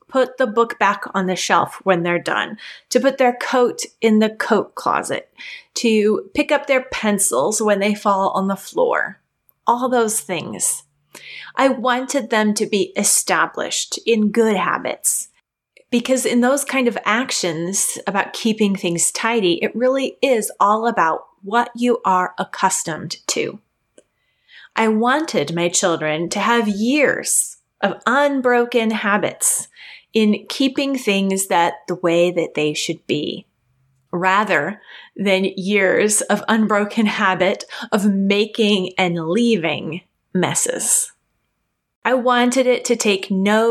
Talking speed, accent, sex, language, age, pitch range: 135 wpm, American, female, English, 30-49, 190-245 Hz